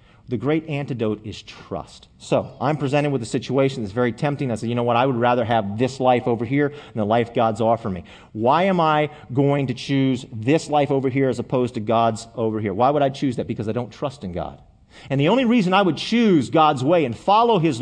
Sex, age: male, 40-59